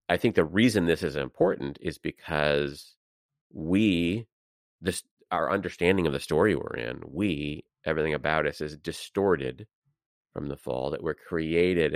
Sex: male